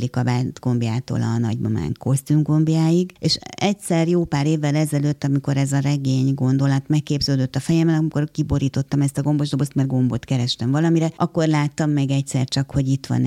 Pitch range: 135-165 Hz